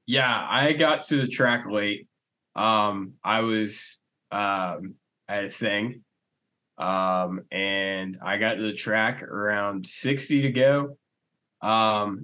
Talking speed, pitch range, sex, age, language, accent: 125 wpm, 105-140 Hz, male, 20-39, English, American